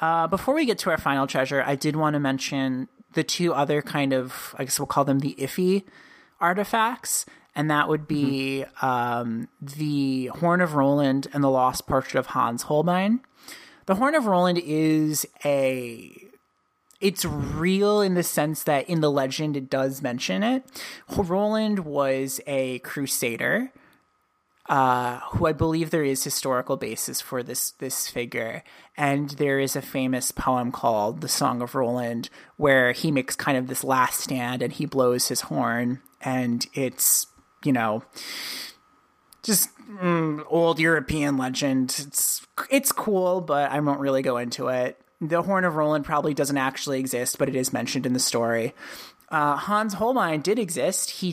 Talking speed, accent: 165 wpm, American